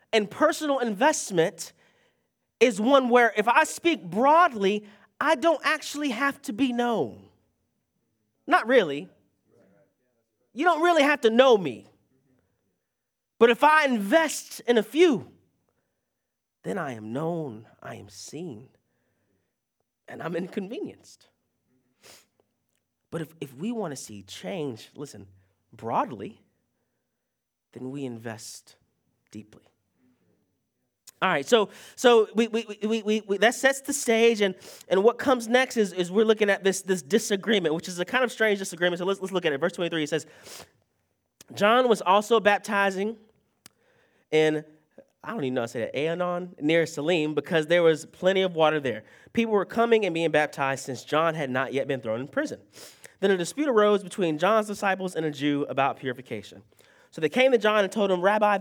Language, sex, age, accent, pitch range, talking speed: English, male, 30-49, American, 155-235 Hz, 165 wpm